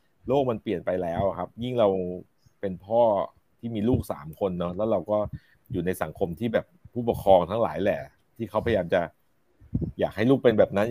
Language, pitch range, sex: Thai, 90-115 Hz, male